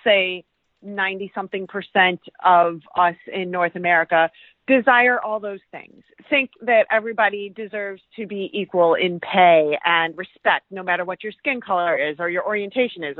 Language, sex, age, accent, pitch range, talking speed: English, female, 30-49, American, 180-225 Hz, 155 wpm